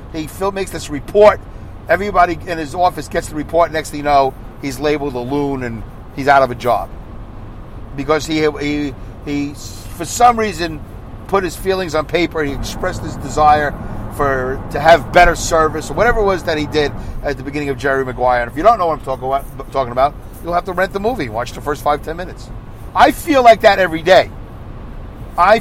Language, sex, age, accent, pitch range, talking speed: English, male, 50-69, American, 120-165 Hz, 205 wpm